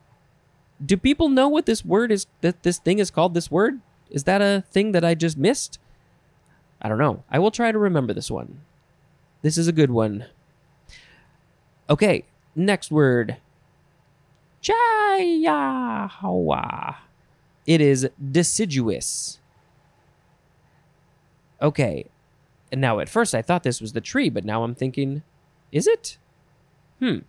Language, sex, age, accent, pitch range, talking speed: English, male, 20-39, American, 135-180 Hz, 135 wpm